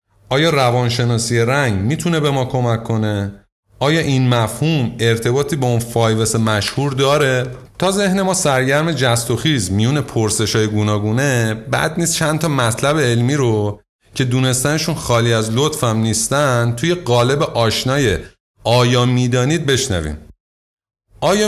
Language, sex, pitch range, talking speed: Persian, male, 105-140 Hz, 130 wpm